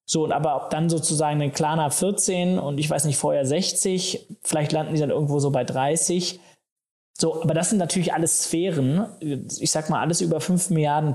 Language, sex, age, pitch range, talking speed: German, male, 20-39, 140-175 Hz, 195 wpm